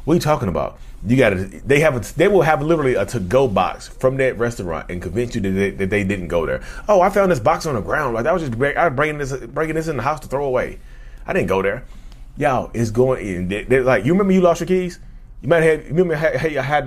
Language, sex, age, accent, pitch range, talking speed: English, male, 30-49, American, 100-155 Hz, 275 wpm